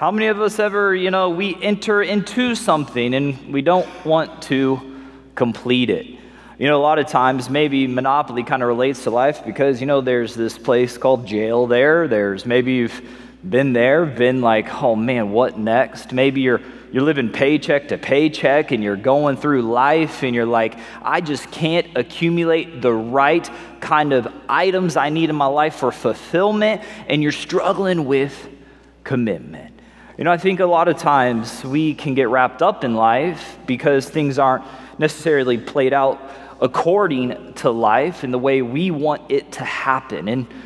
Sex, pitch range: male, 125-165 Hz